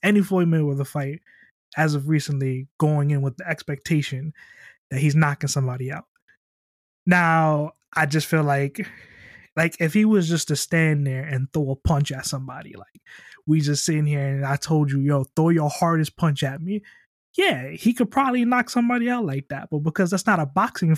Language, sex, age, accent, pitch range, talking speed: English, male, 20-39, American, 140-175 Hz, 190 wpm